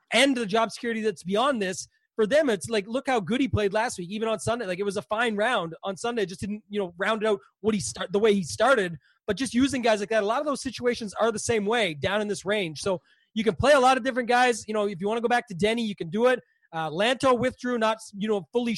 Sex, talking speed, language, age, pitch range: male, 295 wpm, English, 30-49, 205-235 Hz